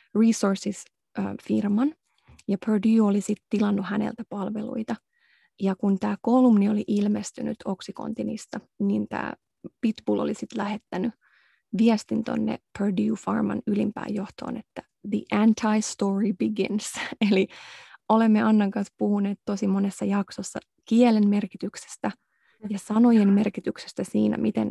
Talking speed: 115 wpm